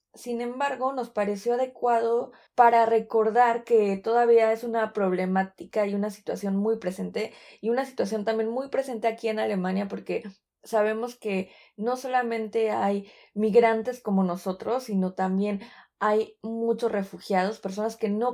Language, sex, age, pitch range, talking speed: Spanish, female, 20-39, 200-235 Hz, 140 wpm